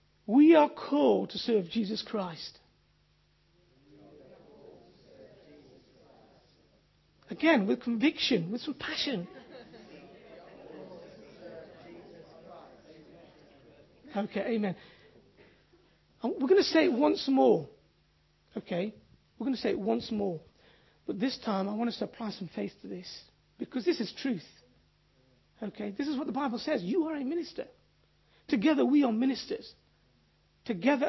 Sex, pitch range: male, 225-310 Hz